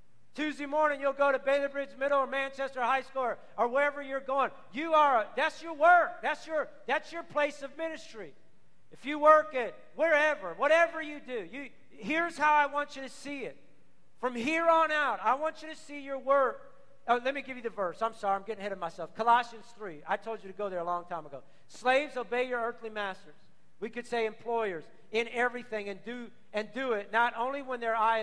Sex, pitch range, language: male, 225-285 Hz, English